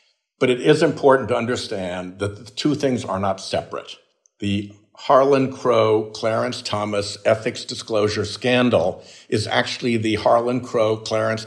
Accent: American